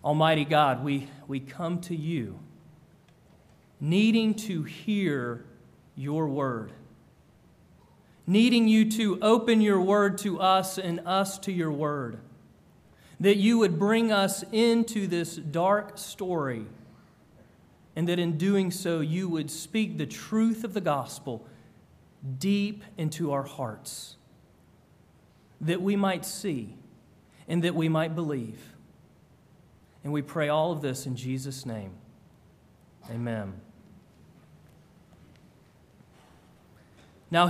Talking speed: 115 wpm